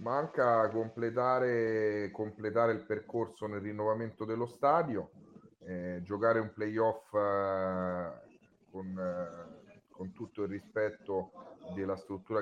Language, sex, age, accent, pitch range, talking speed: Italian, male, 30-49, native, 95-105 Hz, 105 wpm